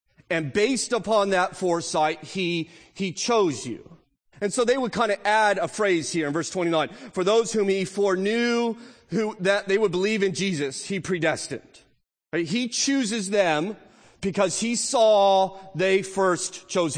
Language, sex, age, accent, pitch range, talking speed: English, male, 30-49, American, 145-200 Hz, 165 wpm